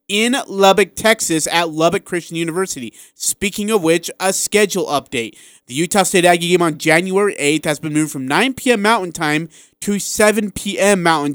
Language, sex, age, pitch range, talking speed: English, male, 30-49, 135-175 Hz, 175 wpm